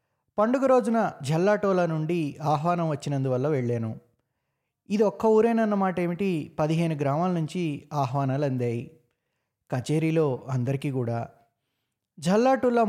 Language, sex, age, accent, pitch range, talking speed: Telugu, male, 20-39, native, 130-175 Hz, 90 wpm